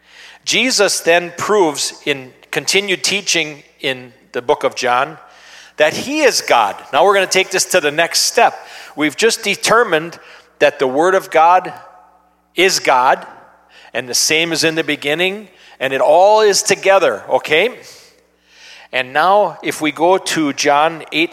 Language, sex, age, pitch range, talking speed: English, male, 40-59, 125-180 Hz, 160 wpm